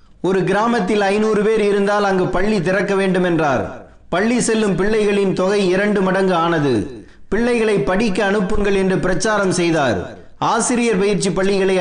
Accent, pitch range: native, 175-205 Hz